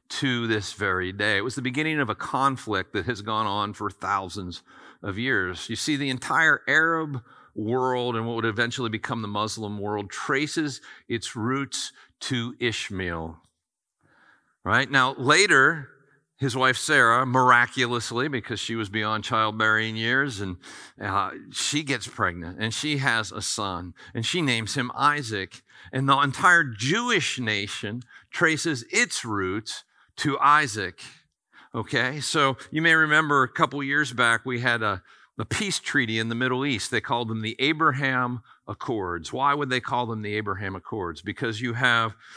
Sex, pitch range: male, 110-135 Hz